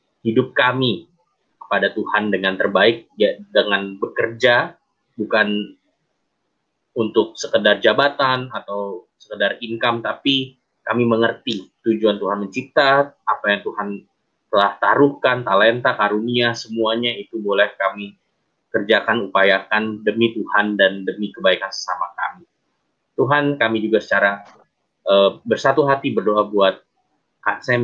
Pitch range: 100-120 Hz